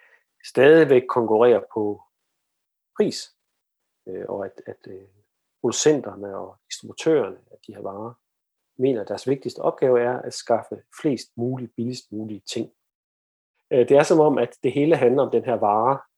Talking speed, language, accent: 150 wpm, Danish, native